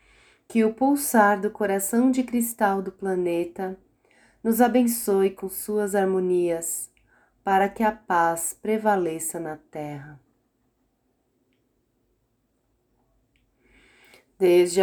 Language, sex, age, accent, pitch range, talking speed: Portuguese, female, 30-49, Brazilian, 165-205 Hz, 90 wpm